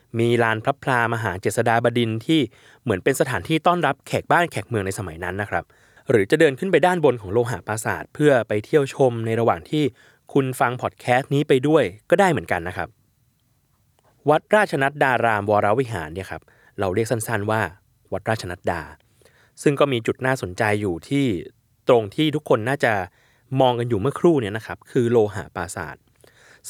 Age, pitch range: 20-39, 105-135 Hz